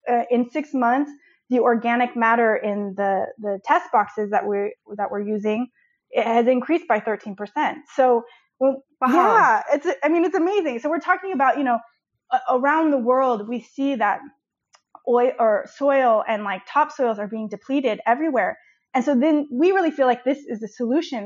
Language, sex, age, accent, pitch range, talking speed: English, female, 20-39, American, 220-285 Hz, 180 wpm